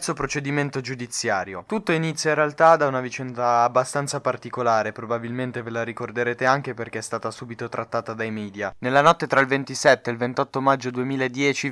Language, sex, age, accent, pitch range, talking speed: Italian, male, 20-39, native, 135-175 Hz, 170 wpm